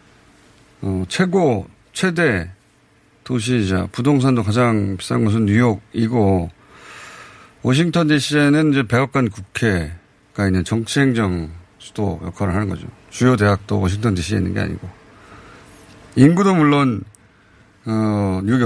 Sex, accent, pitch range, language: male, native, 95-135 Hz, Korean